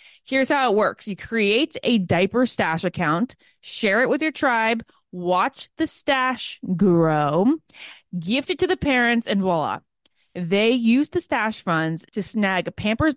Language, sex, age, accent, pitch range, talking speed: English, female, 20-39, American, 175-260 Hz, 155 wpm